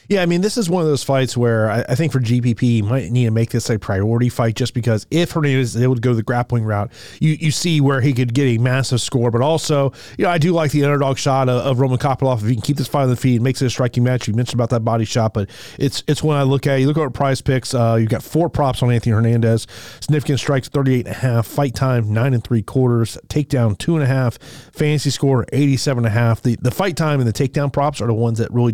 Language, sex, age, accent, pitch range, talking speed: English, male, 30-49, American, 120-145 Hz, 280 wpm